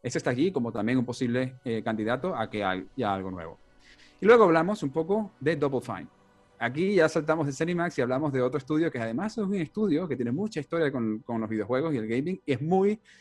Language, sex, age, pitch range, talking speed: Spanish, male, 30-49, 110-150 Hz, 230 wpm